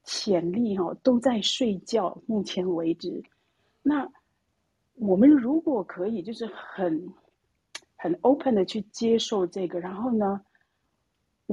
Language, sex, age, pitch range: Chinese, female, 40-59, 185-260 Hz